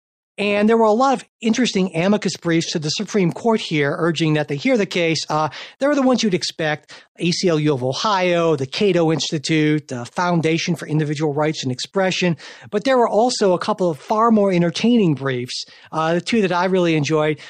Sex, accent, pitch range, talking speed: male, American, 155-205 Hz, 200 wpm